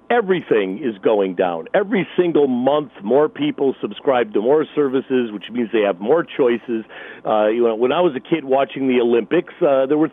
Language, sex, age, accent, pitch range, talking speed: English, male, 50-69, American, 120-175 Hz, 195 wpm